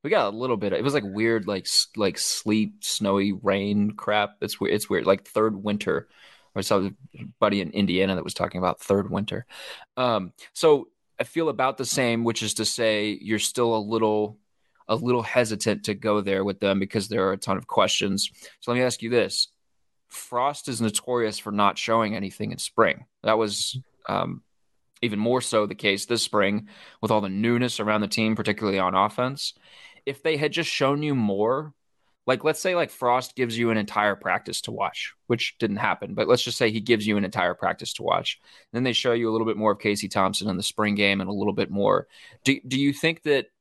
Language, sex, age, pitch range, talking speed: English, male, 20-39, 105-125 Hz, 215 wpm